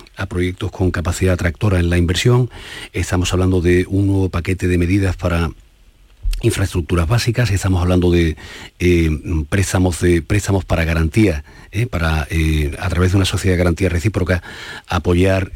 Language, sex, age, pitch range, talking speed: Spanish, male, 40-59, 90-105 Hz, 145 wpm